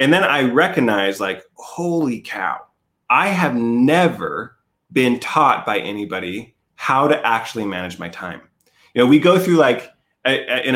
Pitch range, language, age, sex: 120-175 Hz, English, 30-49, male